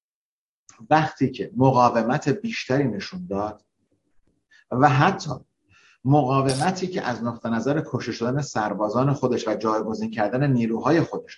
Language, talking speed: Persian, 115 wpm